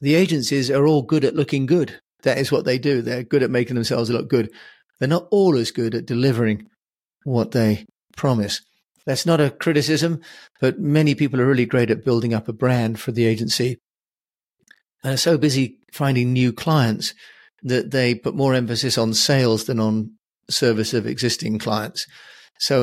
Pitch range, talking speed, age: 115-140 Hz, 180 wpm, 40-59